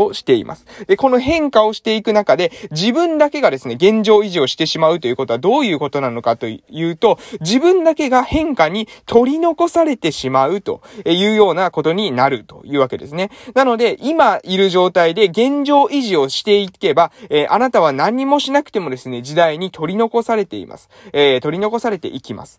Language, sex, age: Japanese, male, 20-39